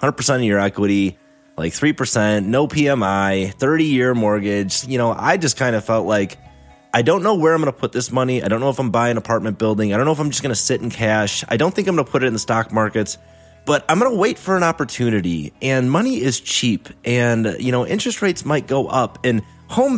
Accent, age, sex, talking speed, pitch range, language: American, 30-49, male, 250 wpm, 105-150 Hz, English